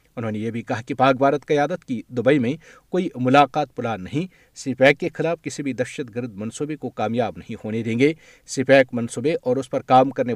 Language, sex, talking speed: Urdu, male, 215 wpm